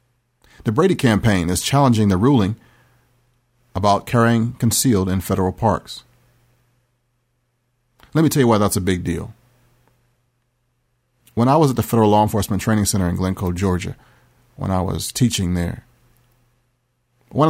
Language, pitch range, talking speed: English, 100-120 Hz, 140 wpm